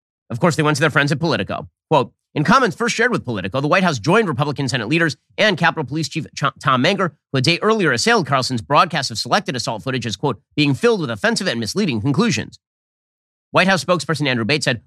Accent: American